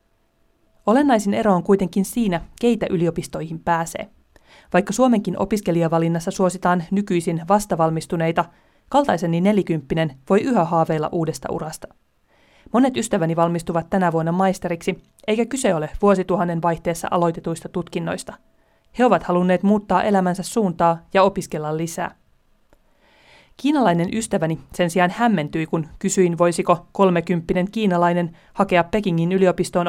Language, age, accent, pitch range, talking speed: Finnish, 30-49, native, 170-195 Hz, 110 wpm